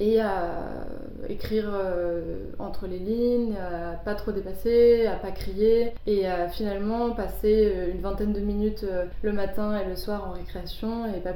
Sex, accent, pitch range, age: female, French, 195-230 Hz, 20-39